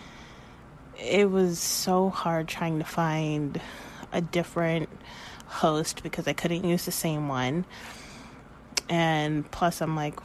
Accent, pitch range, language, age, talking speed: American, 165-205 Hz, English, 30-49, 125 wpm